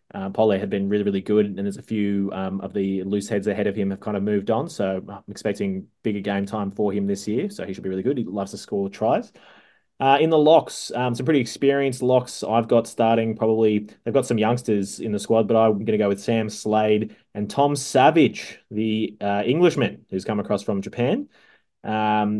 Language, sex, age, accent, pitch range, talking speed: English, male, 20-39, Australian, 100-120 Hz, 230 wpm